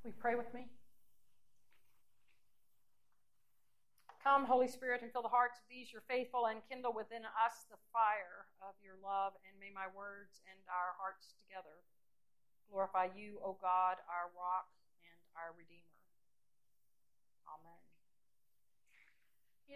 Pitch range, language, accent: 195-245 Hz, English, American